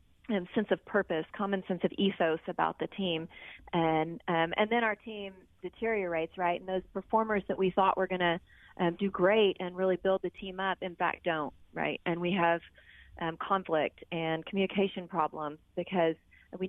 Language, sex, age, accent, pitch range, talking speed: English, female, 30-49, American, 165-195 Hz, 185 wpm